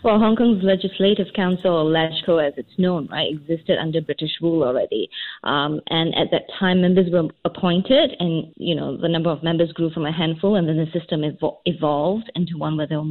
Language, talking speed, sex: English, 205 wpm, female